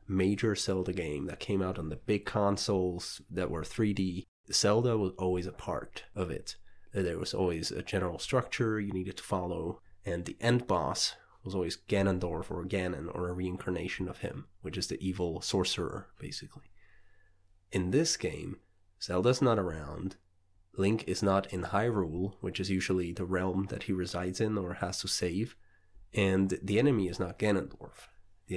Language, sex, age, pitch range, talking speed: English, male, 30-49, 90-100 Hz, 170 wpm